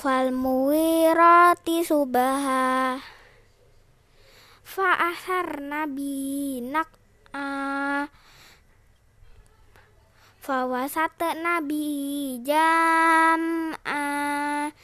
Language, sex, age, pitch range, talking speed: Indonesian, female, 20-39, 255-330 Hz, 40 wpm